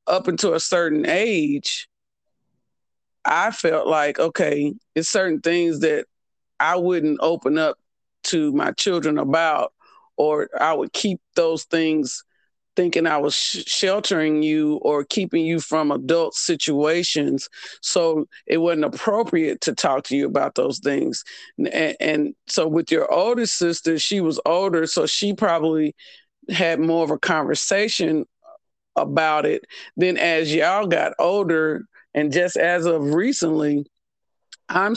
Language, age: English, 40-59